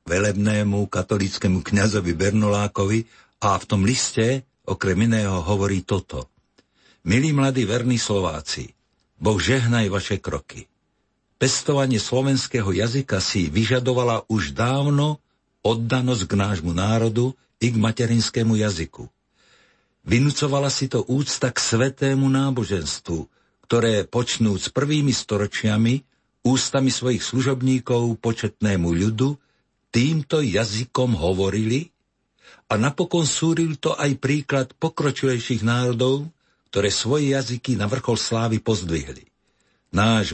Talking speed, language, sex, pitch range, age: 105 wpm, Slovak, male, 105-130 Hz, 60-79